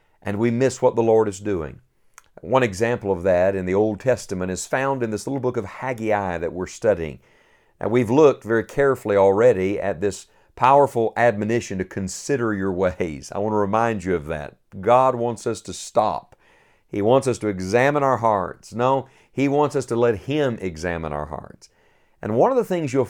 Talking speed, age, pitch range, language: 195 wpm, 50-69, 95-130 Hz, English